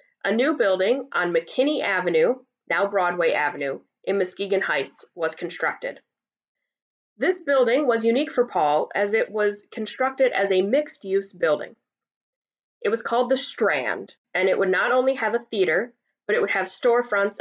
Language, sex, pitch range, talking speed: English, female, 190-255 Hz, 160 wpm